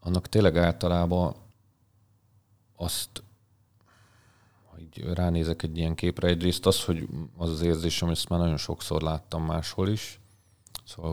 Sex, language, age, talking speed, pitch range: male, Hungarian, 40-59, 125 wpm, 80-100 Hz